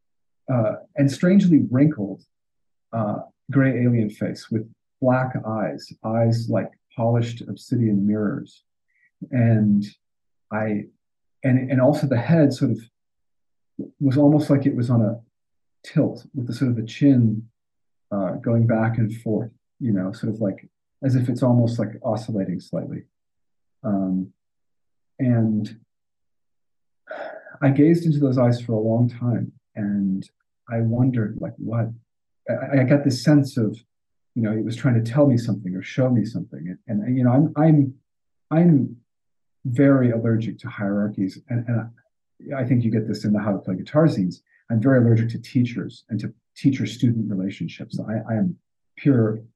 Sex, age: male, 40-59